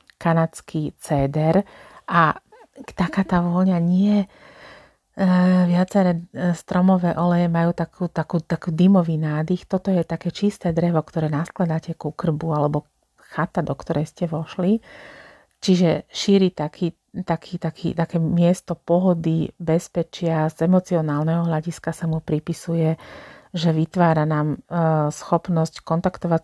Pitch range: 165-180 Hz